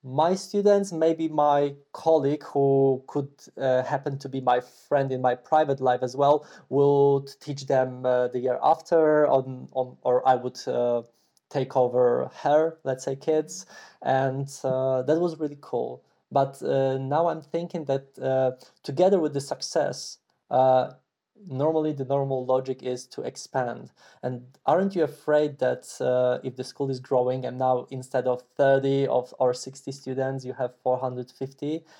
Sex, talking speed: male, 160 wpm